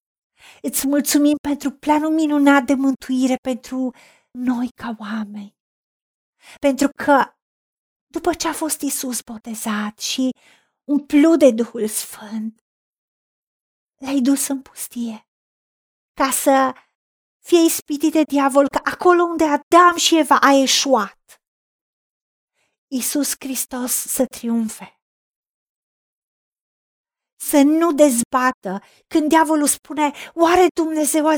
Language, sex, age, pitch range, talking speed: Romanian, female, 30-49, 240-295 Hz, 105 wpm